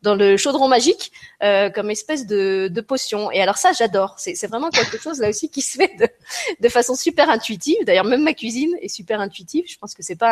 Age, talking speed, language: 30-49, 245 wpm, French